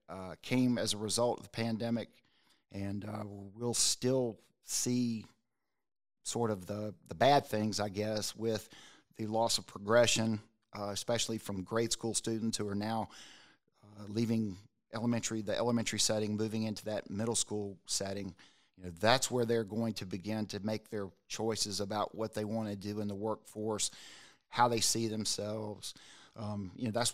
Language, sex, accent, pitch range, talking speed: English, male, American, 105-115 Hz, 170 wpm